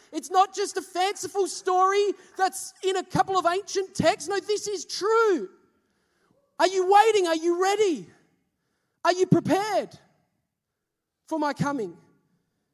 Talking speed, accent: 135 wpm, Australian